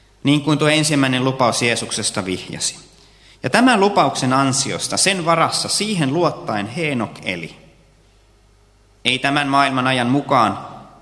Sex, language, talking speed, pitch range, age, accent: male, Finnish, 120 wpm, 105-150 Hz, 30-49, native